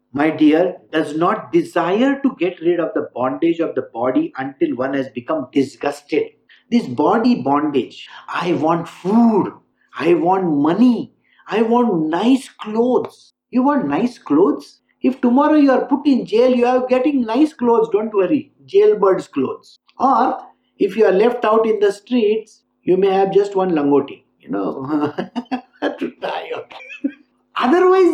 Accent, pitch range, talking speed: Indian, 165-275 Hz, 150 wpm